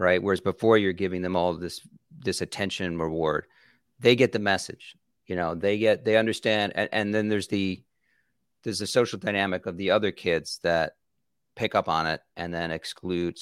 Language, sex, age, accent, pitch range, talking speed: English, male, 40-59, American, 95-120 Hz, 195 wpm